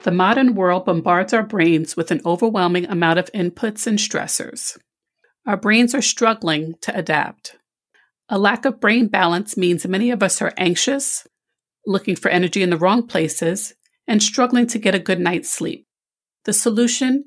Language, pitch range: English, 175-240 Hz